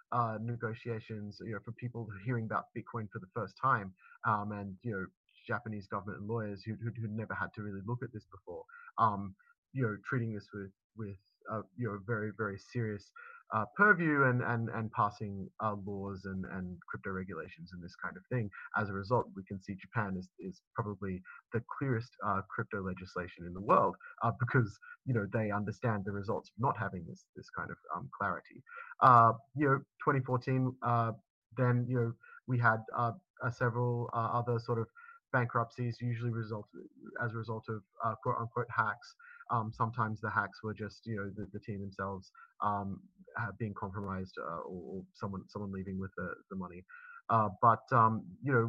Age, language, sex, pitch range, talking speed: 30-49, English, male, 105-125 Hz, 190 wpm